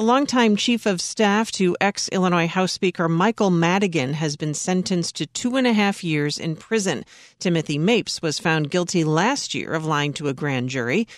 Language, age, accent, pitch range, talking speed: English, 40-59, American, 160-205 Hz, 190 wpm